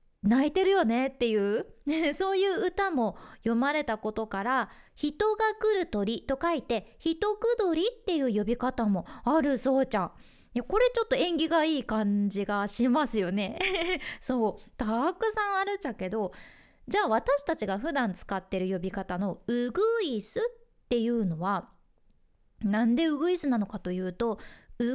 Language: Japanese